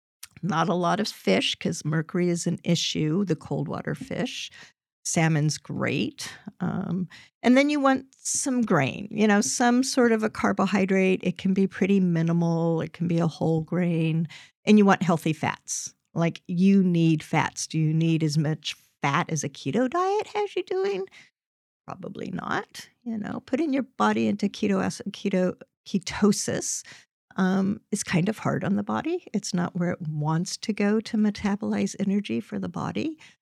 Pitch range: 160-205 Hz